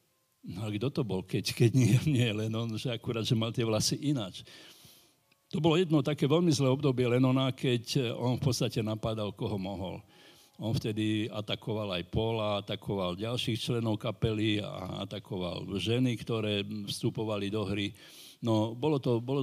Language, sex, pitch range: Slovak, male, 105-135 Hz